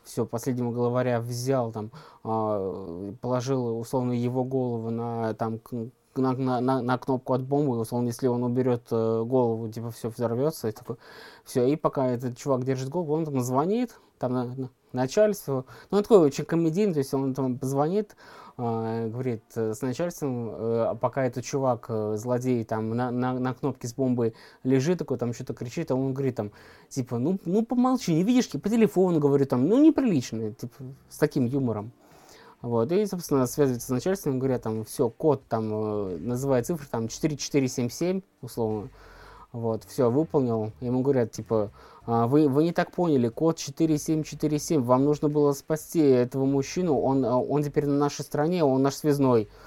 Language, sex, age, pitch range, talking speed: Russian, male, 20-39, 120-150 Hz, 165 wpm